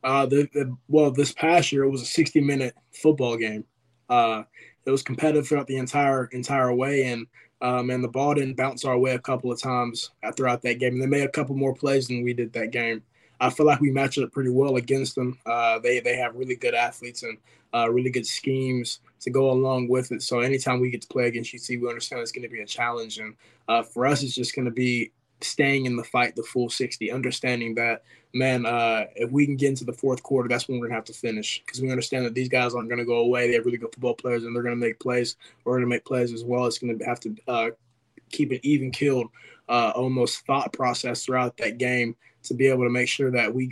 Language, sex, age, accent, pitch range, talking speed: English, male, 20-39, American, 120-135 Hz, 250 wpm